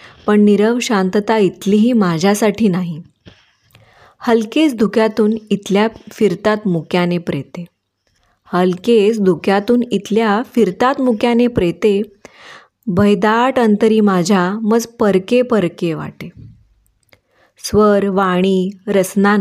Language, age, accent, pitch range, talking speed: Marathi, 20-39, native, 185-230 Hz, 85 wpm